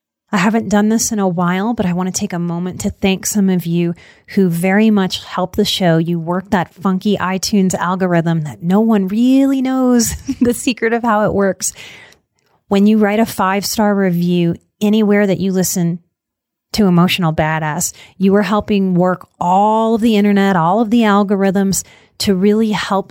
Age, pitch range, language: 30-49, 180-210 Hz, English